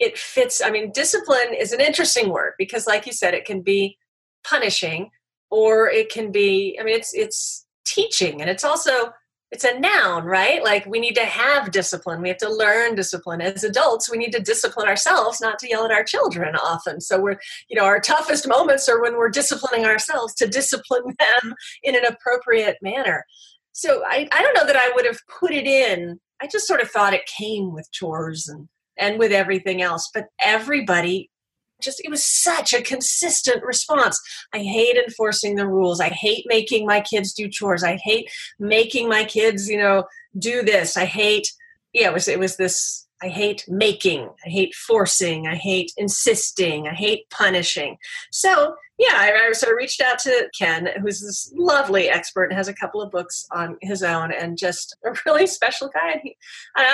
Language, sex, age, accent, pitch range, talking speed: English, female, 30-49, American, 195-275 Hz, 195 wpm